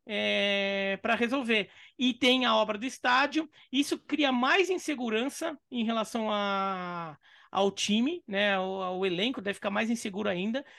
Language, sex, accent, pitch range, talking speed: Portuguese, male, Brazilian, 210-280 Hz, 135 wpm